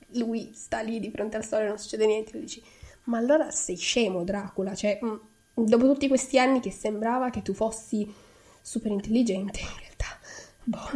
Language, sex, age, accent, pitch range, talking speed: Italian, female, 10-29, native, 200-235 Hz, 185 wpm